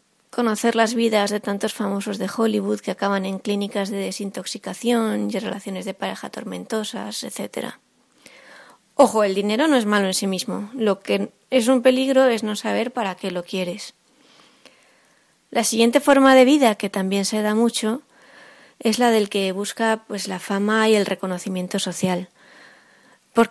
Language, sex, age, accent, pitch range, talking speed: Spanish, female, 20-39, Spanish, 200-245 Hz, 165 wpm